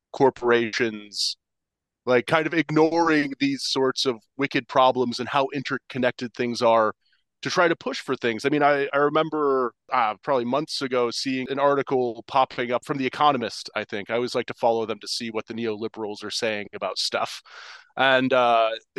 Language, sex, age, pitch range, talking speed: English, male, 30-49, 125-170 Hz, 180 wpm